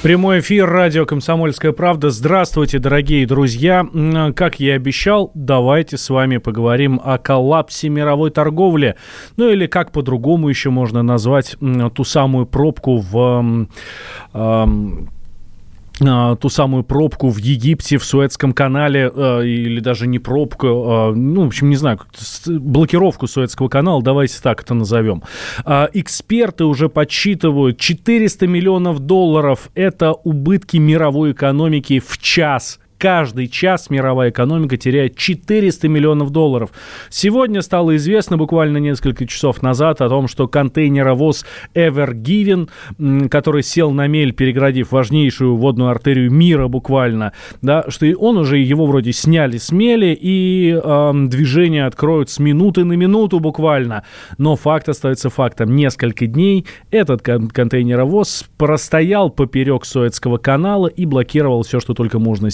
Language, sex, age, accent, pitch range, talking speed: Russian, male, 30-49, native, 125-160 Hz, 130 wpm